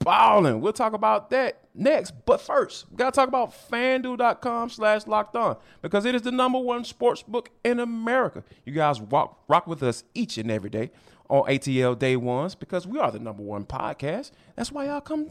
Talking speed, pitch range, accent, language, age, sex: 205 wpm, 150-255 Hz, American, English, 20-39, male